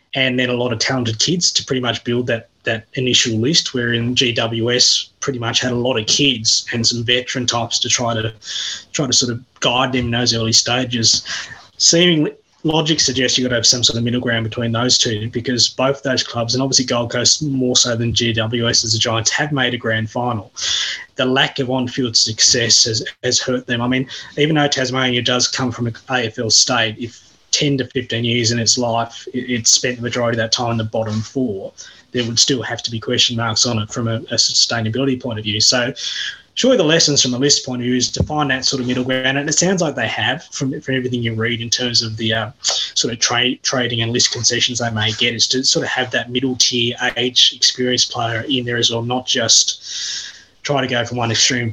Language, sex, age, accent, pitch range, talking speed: English, male, 20-39, Australian, 115-130 Hz, 230 wpm